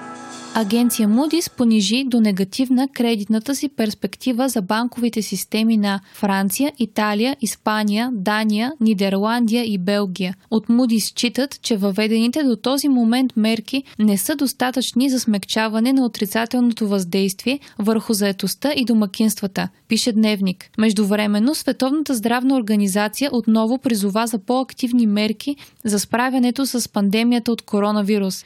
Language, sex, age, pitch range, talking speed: Bulgarian, female, 20-39, 210-255 Hz, 120 wpm